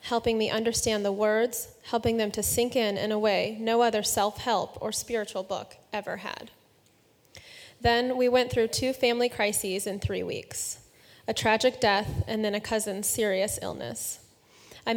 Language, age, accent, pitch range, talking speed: English, 20-39, American, 205-230 Hz, 165 wpm